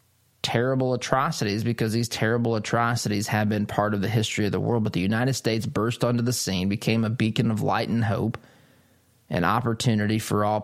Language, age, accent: English, 20-39, American